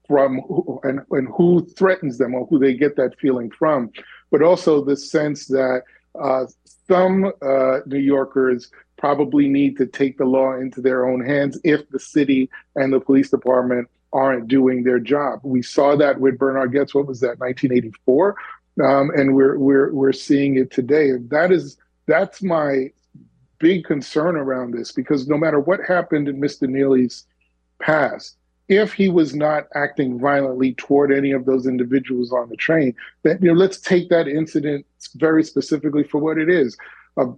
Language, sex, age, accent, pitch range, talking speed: English, male, 40-59, American, 130-150 Hz, 175 wpm